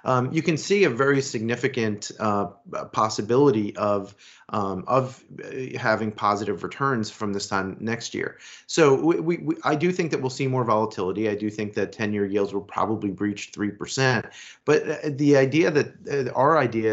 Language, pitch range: English, 105-125 Hz